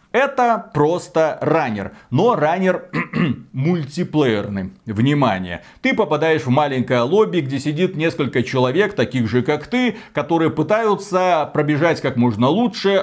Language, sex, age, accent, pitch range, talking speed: Russian, male, 30-49, native, 130-185 Hz, 120 wpm